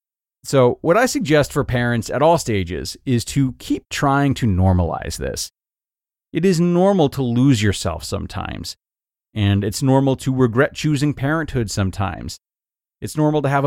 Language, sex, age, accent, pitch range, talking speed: English, male, 30-49, American, 105-145 Hz, 155 wpm